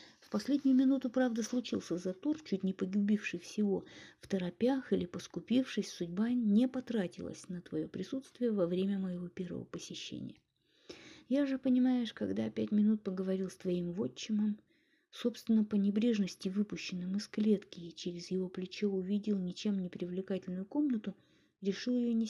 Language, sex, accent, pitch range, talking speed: Russian, female, native, 185-235 Hz, 140 wpm